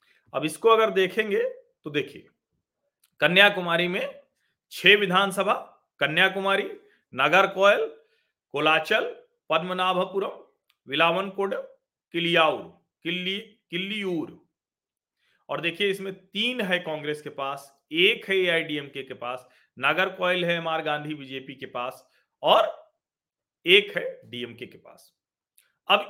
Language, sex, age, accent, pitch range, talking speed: Hindi, male, 40-59, native, 150-225 Hz, 110 wpm